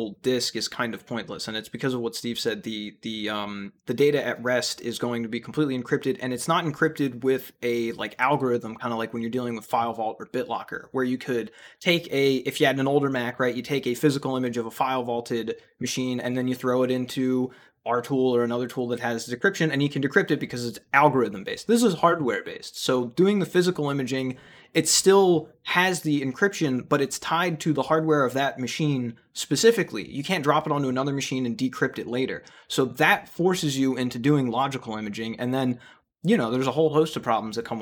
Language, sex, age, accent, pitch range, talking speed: English, male, 20-39, American, 120-140 Hz, 225 wpm